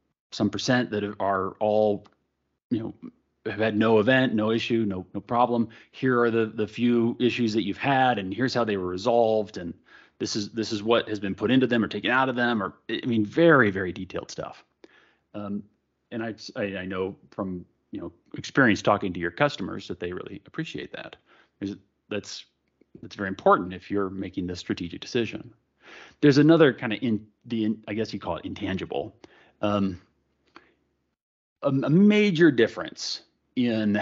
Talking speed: 180 wpm